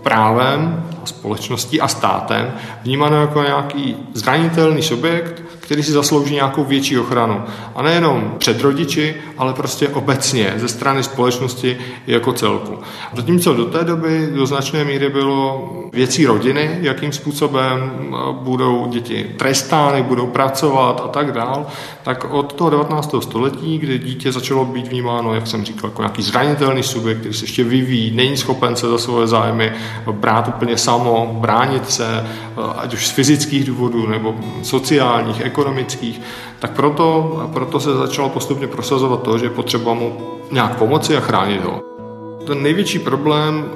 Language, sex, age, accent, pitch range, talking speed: Czech, male, 40-59, native, 115-145 Hz, 145 wpm